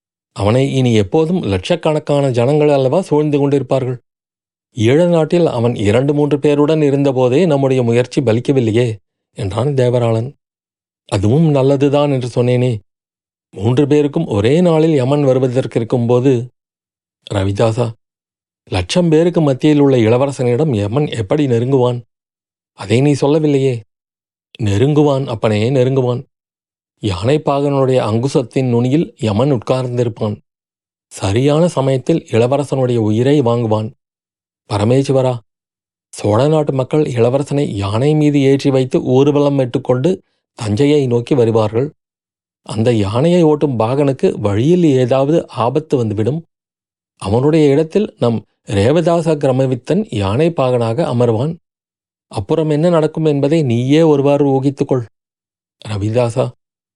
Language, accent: Tamil, native